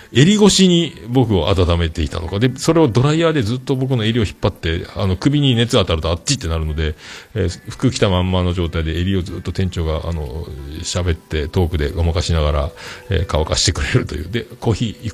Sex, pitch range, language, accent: male, 80-115 Hz, Japanese, native